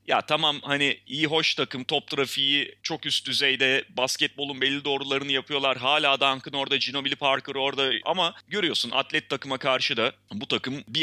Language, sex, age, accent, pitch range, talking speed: Turkish, male, 30-49, native, 125-160 Hz, 165 wpm